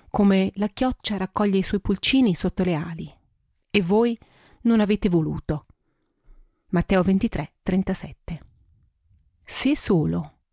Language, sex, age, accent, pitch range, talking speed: Italian, female, 40-59, native, 170-230 Hz, 115 wpm